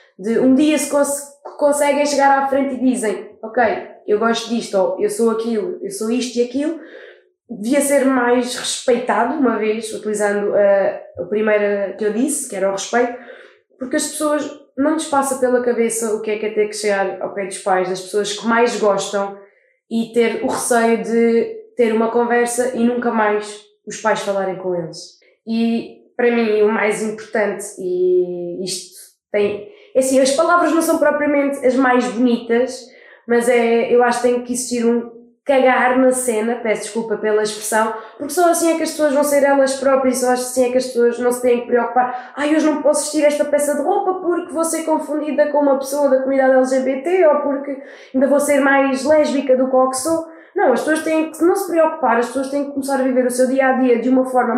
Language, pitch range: Portuguese, 220-285 Hz